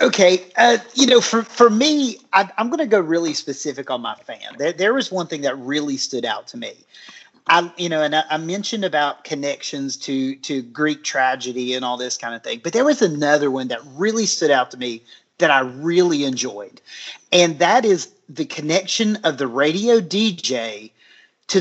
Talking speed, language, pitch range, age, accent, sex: 195 wpm, English, 155-210 Hz, 40-59, American, male